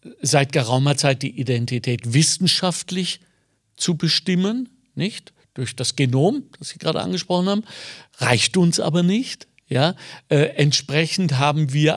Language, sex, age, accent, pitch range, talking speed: German, male, 50-69, German, 135-175 Hz, 130 wpm